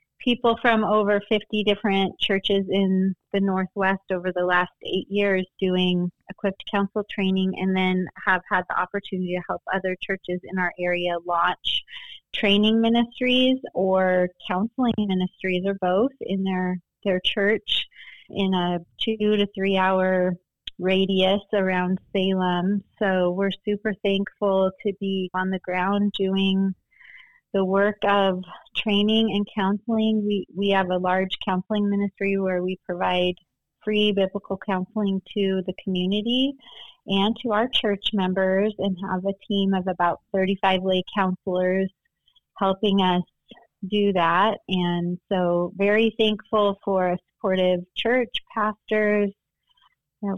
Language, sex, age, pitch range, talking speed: English, female, 30-49, 185-205 Hz, 135 wpm